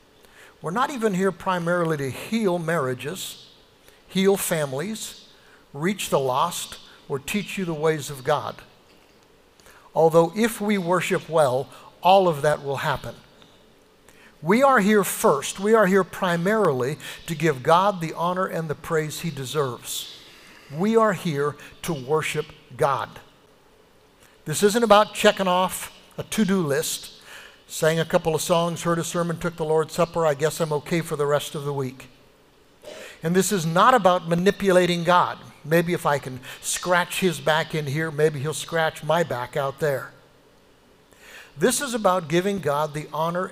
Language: English